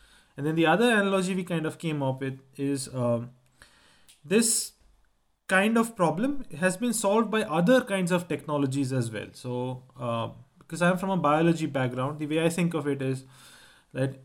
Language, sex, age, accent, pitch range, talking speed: English, male, 30-49, Indian, 130-180 Hz, 180 wpm